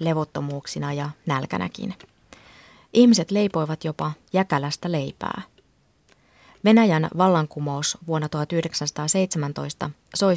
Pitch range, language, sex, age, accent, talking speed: 150-185 Hz, Finnish, female, 20-39, native, 75 wpm